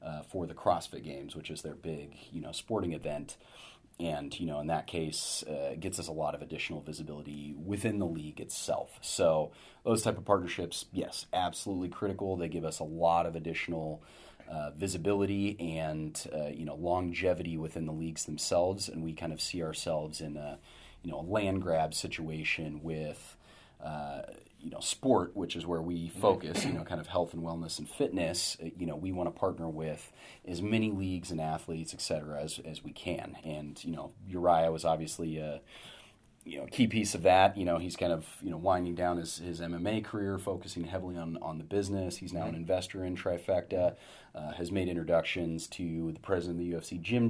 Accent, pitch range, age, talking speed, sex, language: American, 80-90 Hz, 30-49, 200 wpm, male, English